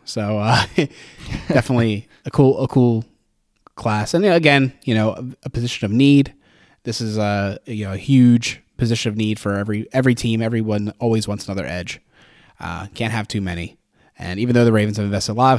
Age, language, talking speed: 20-39, English, 190 wpm